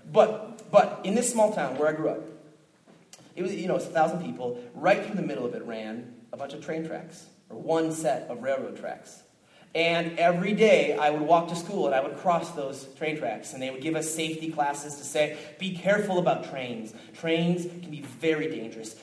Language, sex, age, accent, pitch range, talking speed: English, male, 30-49, American, 155-200 Hz, 215 wpm